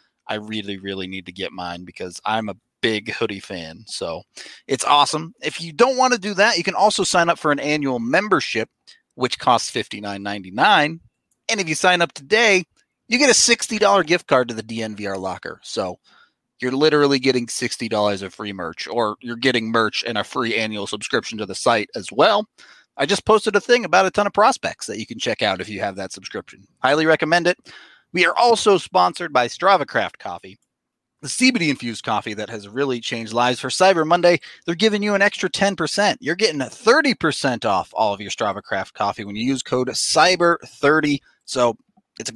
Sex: male